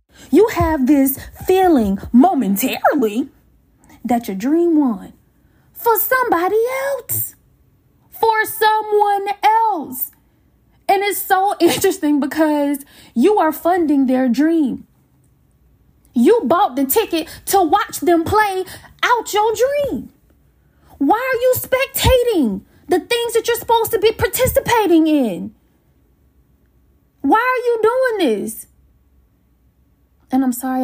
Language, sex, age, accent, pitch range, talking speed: English, female, 20-39, American, 245-385 Hz, 110 wpm